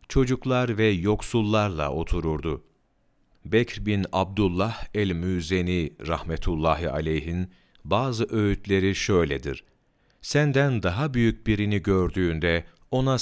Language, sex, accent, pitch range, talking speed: Turkish, male, native, 85-115 Hz, 90 wpm